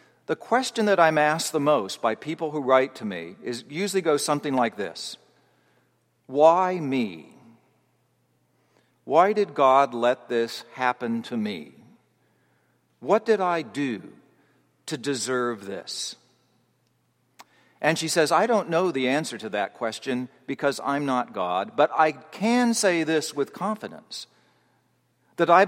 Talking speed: 140 wpm